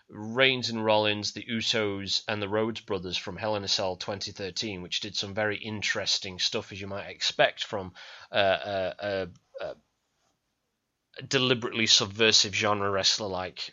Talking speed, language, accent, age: 145 wpm, English, British, 30-49